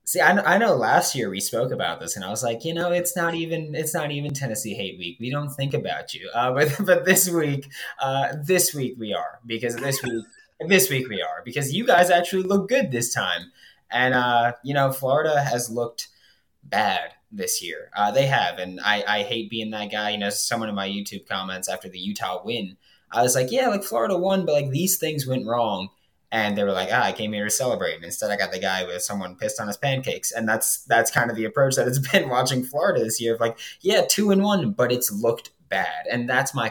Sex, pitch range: male, 105-155 Hz